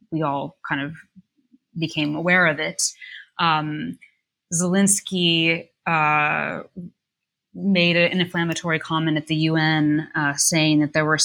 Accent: American